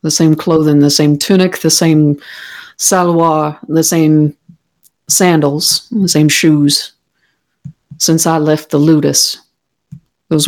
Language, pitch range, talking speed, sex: English, 155-180 Hz, 120 wpm, female